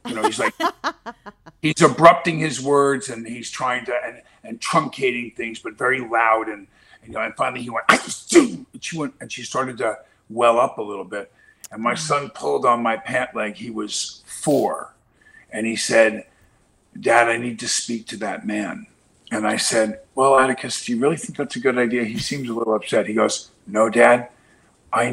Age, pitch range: 50-69, 105-140 Hz